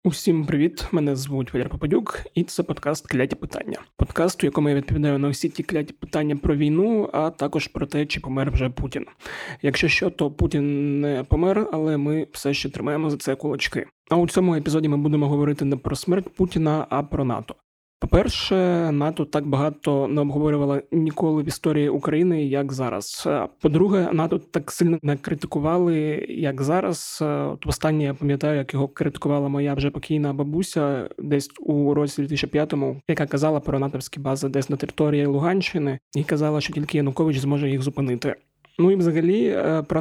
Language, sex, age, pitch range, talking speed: Ukrainian, male, 20-39, 140-155 Hz, 170 wpm